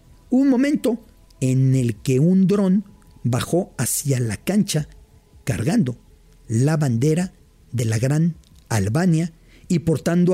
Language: English